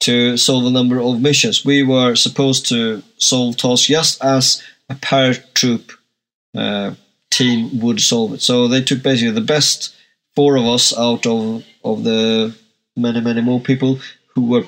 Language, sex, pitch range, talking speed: English, male, 120-140 Hz, 165 wpm